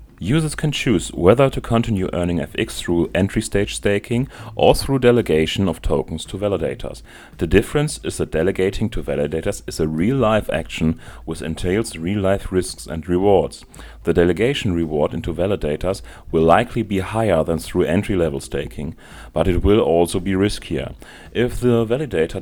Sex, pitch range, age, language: male, 80-115 Hz, 30-49, English